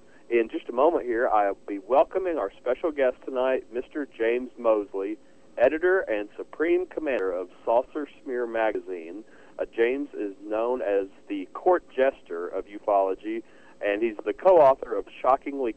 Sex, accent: male, American